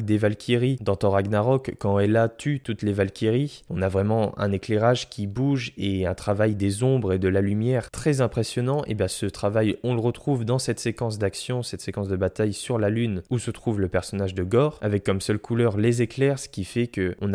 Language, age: French, 20-39